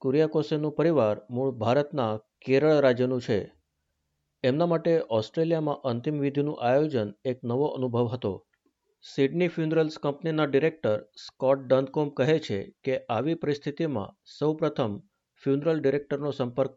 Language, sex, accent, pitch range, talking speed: Gujarati, male, native, 120-150 Hz, 110 wpm